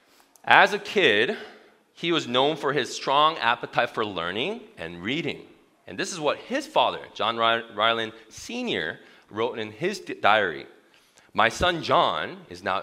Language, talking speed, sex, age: English, 160 wpm, male, 30-49